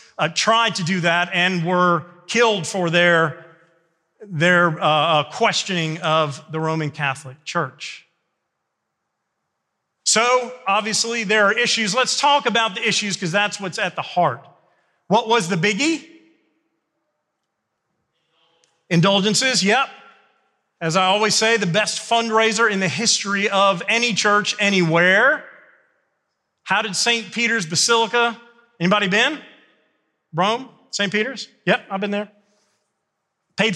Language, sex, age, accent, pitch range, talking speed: English, male, 40-59, American, 175-225 Hz, 125 wpm